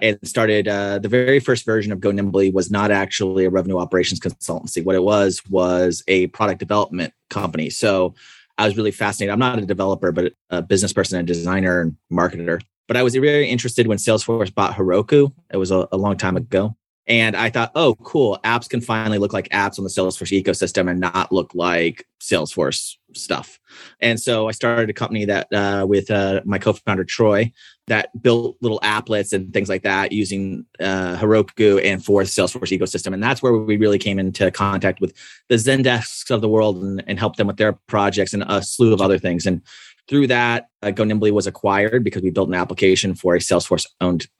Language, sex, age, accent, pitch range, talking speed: English, male, 30-49, American, 95-110 Hz, 205 wpm